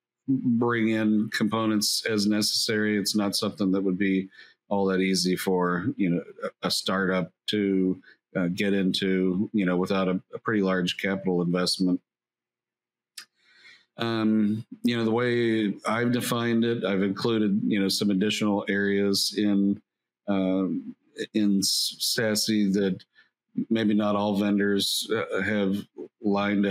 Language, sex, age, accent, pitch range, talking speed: English, male, 50-69, American, 95-110 Hz, 130 wpm